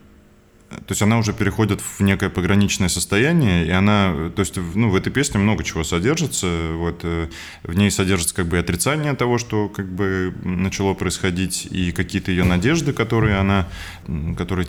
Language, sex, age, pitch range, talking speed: Russian, male, 20-39, 85-105 Hz, 165 wpm